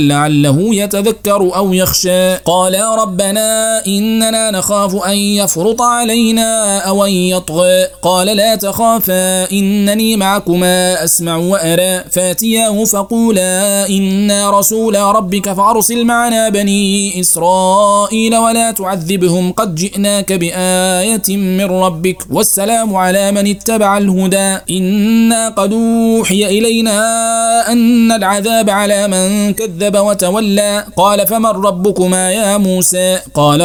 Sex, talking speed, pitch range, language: male, 105 wpm, 185-220 Hz, Arabic